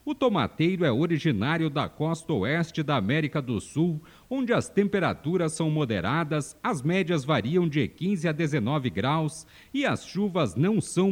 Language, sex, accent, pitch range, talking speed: Portuguese, male, Brazilian, 155-185 Hz, 155 wpm